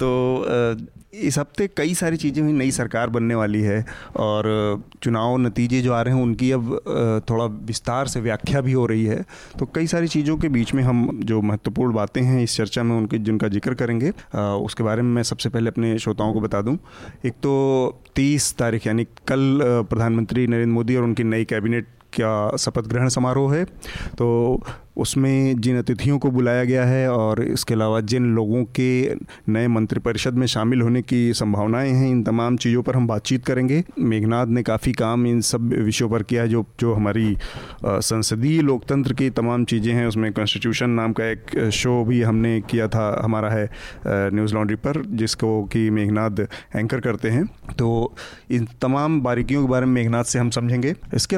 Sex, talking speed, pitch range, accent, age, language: male, 185 wpm, 110-130 Hz, native, 30-49, Hindi